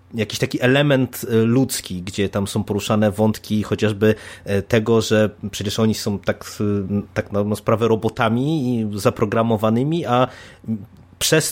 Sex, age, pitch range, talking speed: male, 20-39, 105-125 Hz, 125 wpm